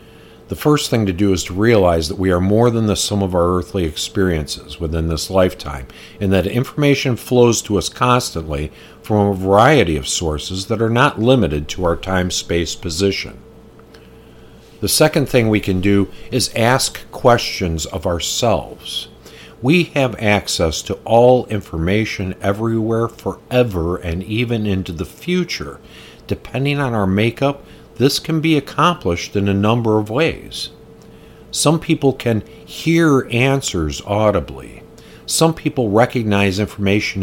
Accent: American